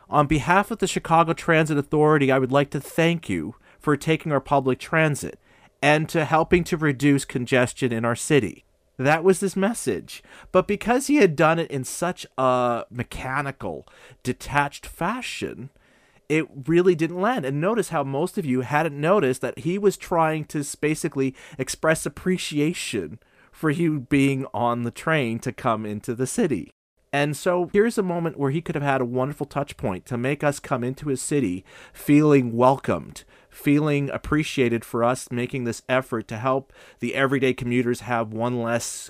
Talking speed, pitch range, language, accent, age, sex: 170 wpm, 120-155 Hz, English, American, 40-59, male